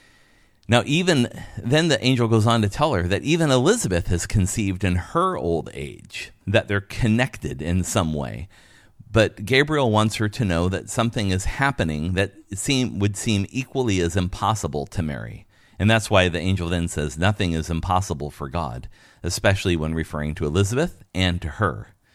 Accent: American